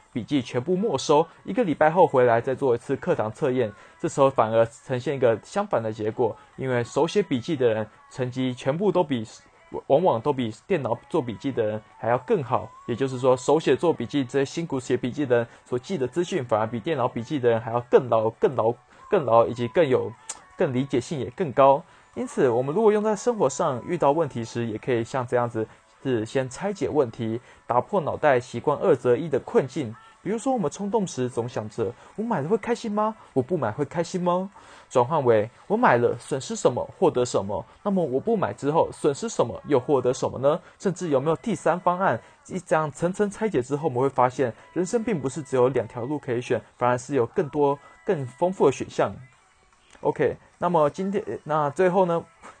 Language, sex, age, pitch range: English, male, 20-39, 120-180 Hz